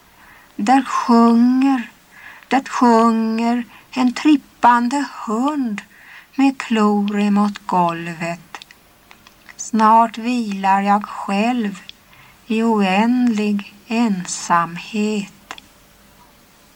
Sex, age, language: female, 60-79, Swedish